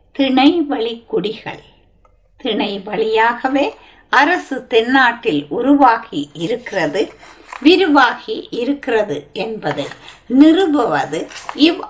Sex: female